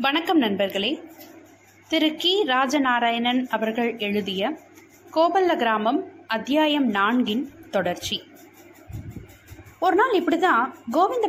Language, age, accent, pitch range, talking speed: Tamil, 20-39, native, 230-330 Hz, 80 wpm